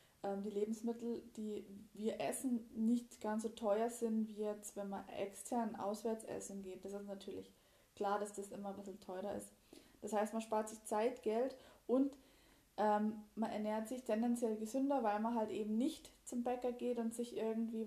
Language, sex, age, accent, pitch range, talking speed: German, female, 20-39, German, 210-240 Hz, 180 wpm